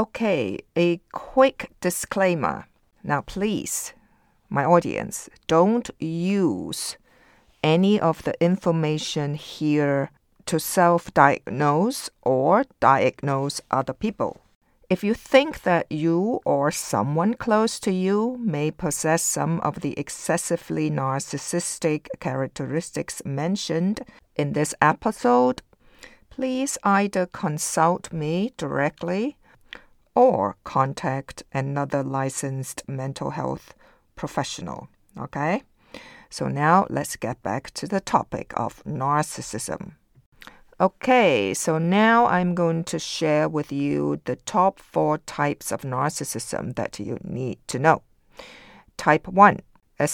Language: English